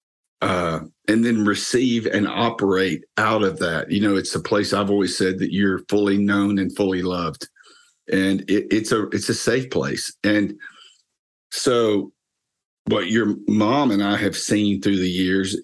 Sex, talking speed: male, 170 wpm